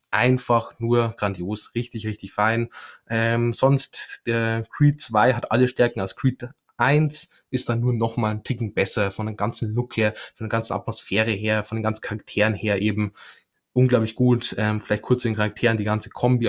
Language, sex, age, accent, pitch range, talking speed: German, male, 20-39, German, 105-120 Hz, 190 wpm